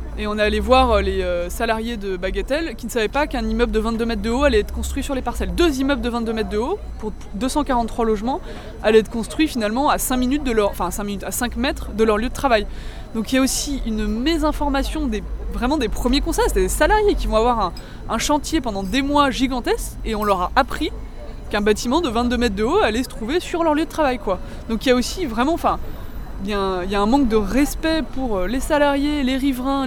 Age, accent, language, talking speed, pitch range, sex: 20-39, French, French, 250 wpm, 220-290 Hz, female